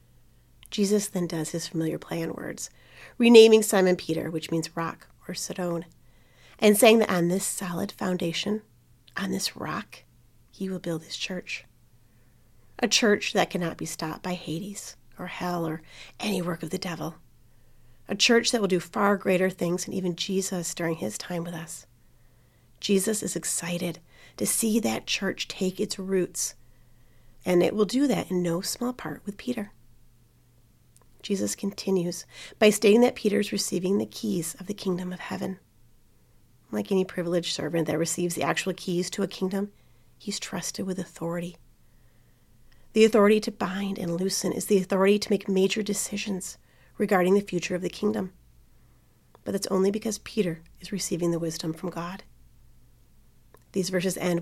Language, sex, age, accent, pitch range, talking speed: English, female, 30-49, American, 155-200 Hz, 165 wpm